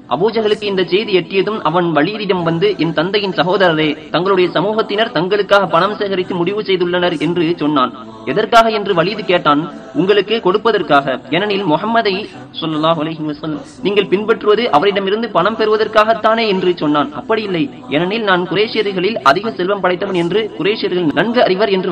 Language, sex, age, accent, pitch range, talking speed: Tamil, male, 30-49, native, 180-225 Hz, 100 wpm